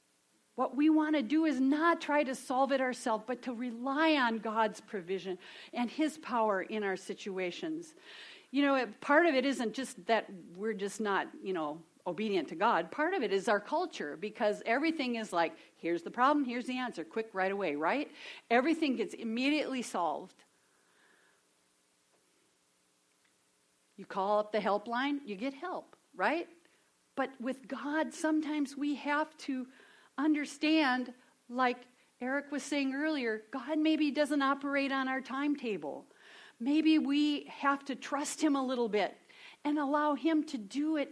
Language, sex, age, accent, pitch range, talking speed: English, female, 50-69, American, 215-295 Hz, 160 wpm